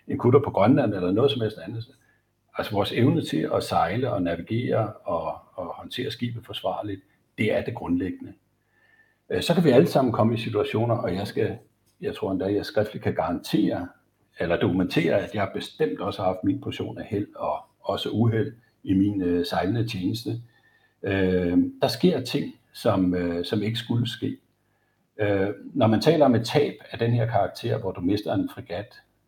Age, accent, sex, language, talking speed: 60-79, native, male, Danish, 175 wpm